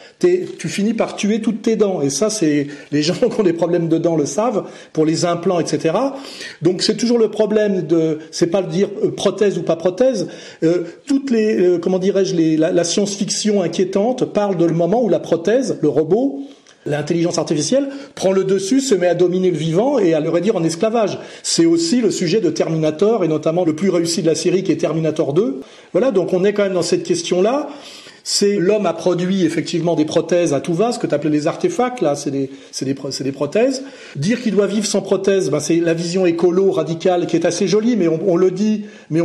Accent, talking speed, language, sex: French, 230 wpm, French, male